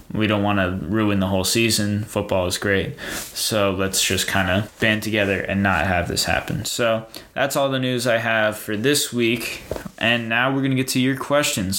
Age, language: 20-39, English